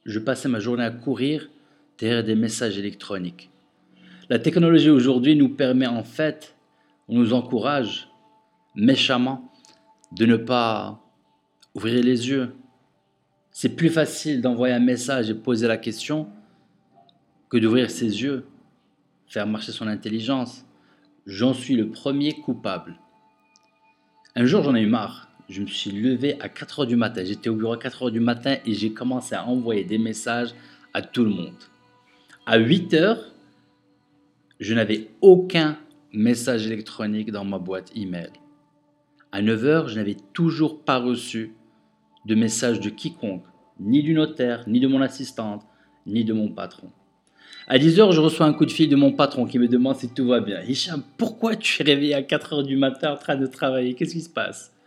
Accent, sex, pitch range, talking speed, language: French, male, 110-145 Hz, 165 wpm, French